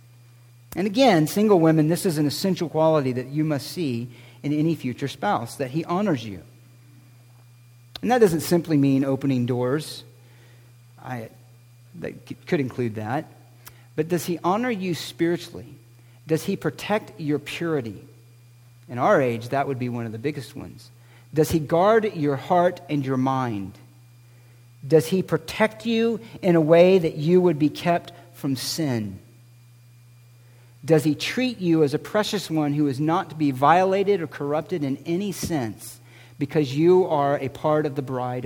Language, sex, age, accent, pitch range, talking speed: English, male, 50-69, American, 120-160 Hz, 160 wpm